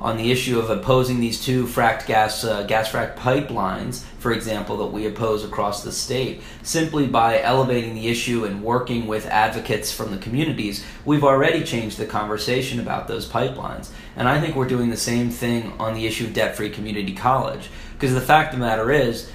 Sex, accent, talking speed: male, American, 195 wpm